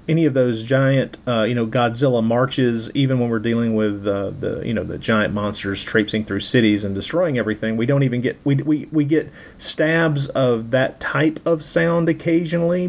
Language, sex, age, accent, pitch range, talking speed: English, male, 40-59, American, 120-150 Hz, 195 wpm